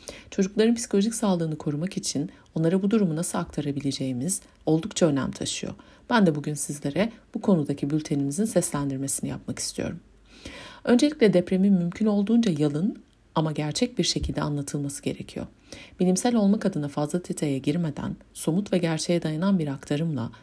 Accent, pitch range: native, 145-205 Hz